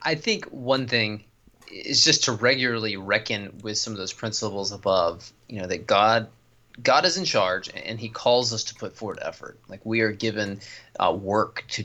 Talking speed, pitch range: 190 wpm, 110-130 Hz